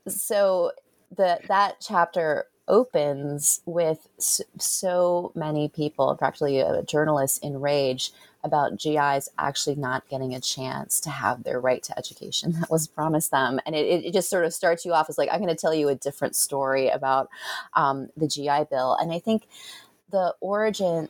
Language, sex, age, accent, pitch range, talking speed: English, female, 20-39, American, 135-165 Hz, 165 wpm